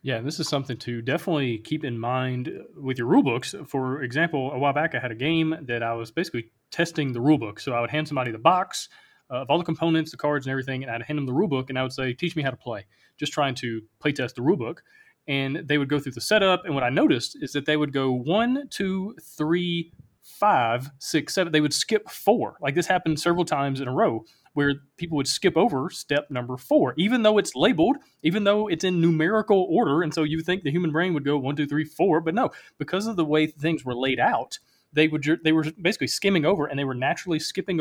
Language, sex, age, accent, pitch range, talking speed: English, male, 30-49, American, 130-165 Hz, 250 wpm